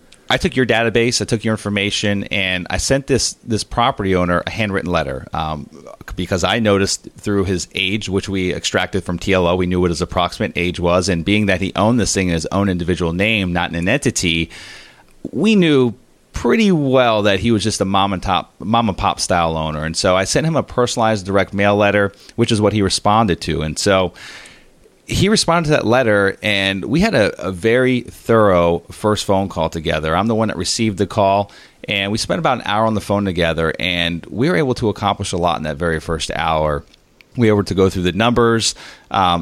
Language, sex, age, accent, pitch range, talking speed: English, male, 30-49, American, 90-110 Hz, 220 wpm